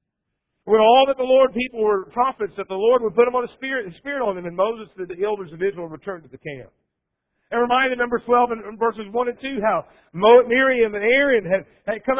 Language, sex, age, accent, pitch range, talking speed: English, male, 50-69, American, 200-275 Hz, 230 wpm